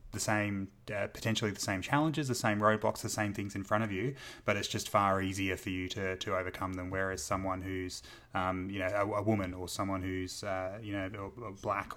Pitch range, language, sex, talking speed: 95-110 Hz, English, male, 220 wpm